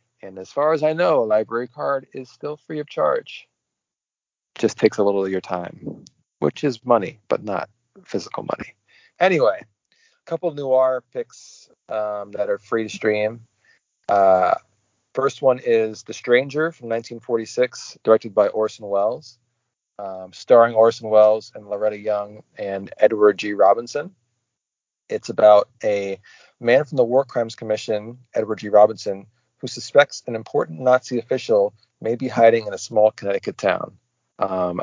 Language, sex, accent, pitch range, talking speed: English, male, American, 100-125 Hz, 155 wpm